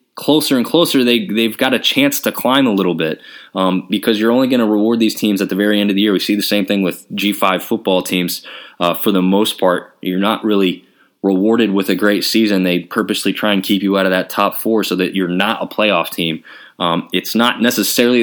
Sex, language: male, English